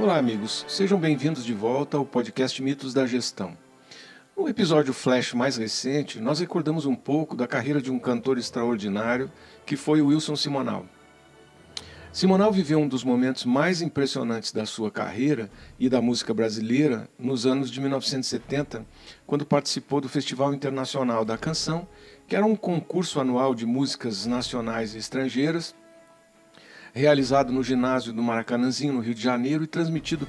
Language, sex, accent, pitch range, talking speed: Portuguese, male, Brazilian, 120-150 Hz, 155 wpm